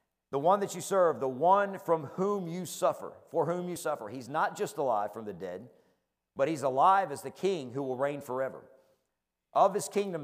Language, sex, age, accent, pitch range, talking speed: English, male, 50-69, American, 135-200 Hz, 205 wpm